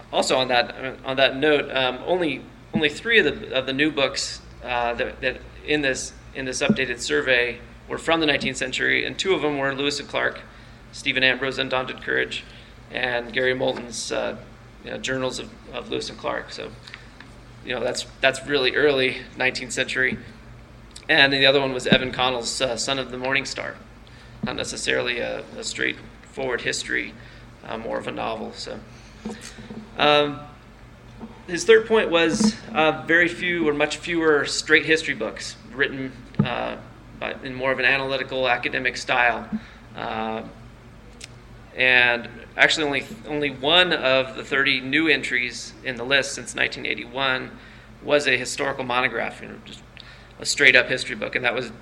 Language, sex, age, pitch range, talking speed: English, male, 30-49, 120-140 Hz, 165 wpm